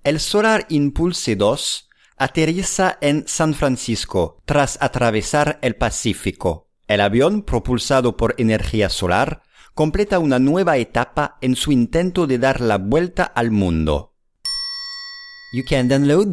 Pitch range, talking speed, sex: 110-175 Hz, 125 wpm, male